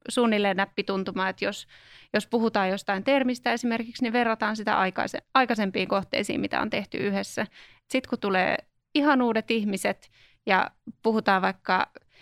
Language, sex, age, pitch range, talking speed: Finnish, female, 20-39, 205-245 Hz, 135 wpm